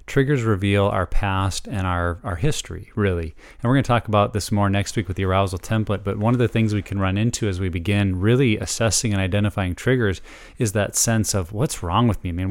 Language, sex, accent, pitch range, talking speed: English, male, American, 100-120 Hz, 240 wpm